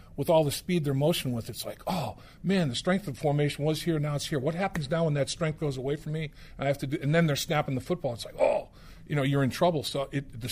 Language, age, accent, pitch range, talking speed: English, 50-69, American, 115-150 Hz, 285 wpm